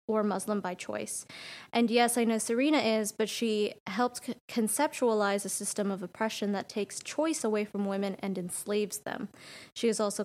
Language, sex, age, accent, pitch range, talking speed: English, female, 20-39, American, 195-225 Hz, 170 wpm